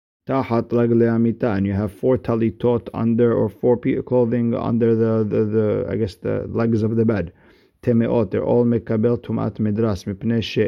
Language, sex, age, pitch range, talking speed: English, male, 50-69, 100-115 Hz, 165 wpm